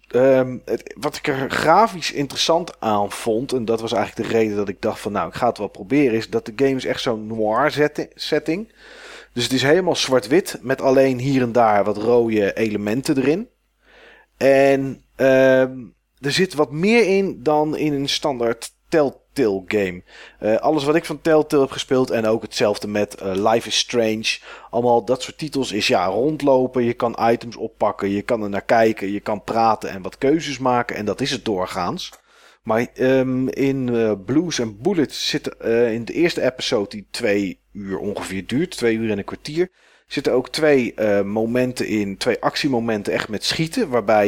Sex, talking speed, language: male, 185 wpm, Dutch